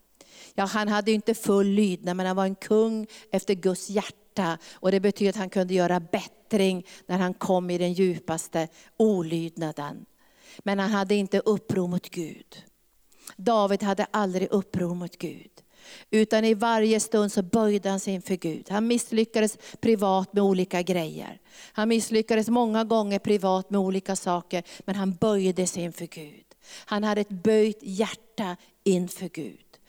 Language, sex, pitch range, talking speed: Swedish, female, 180-215 Hz, 160 wpm